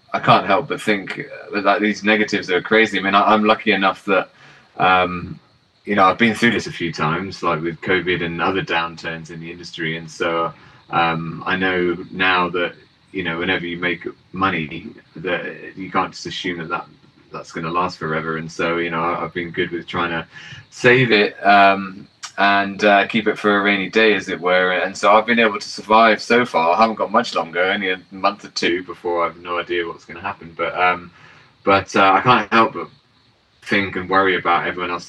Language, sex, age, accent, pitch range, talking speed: English, male, 20-39, British, 85-100 Hz, 215 wpm